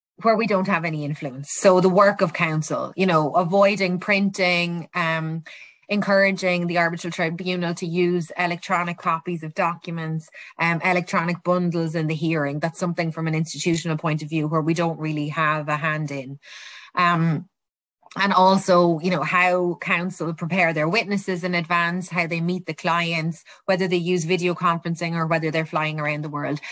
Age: 20-39